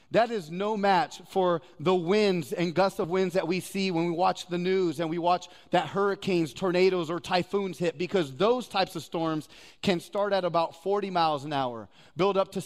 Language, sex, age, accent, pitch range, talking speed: English, male, 30-49, American, 170-210 Hz, 210 wpm